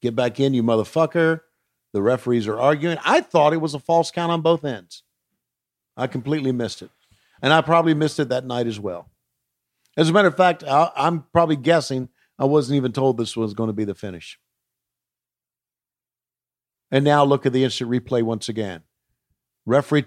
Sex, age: male, 50-69